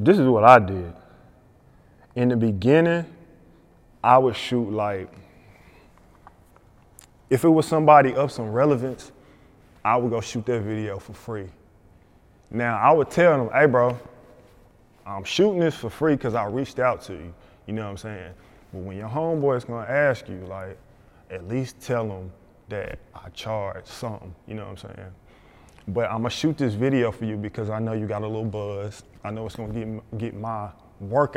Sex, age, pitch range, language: male, 20-39, 105-125 Hz, English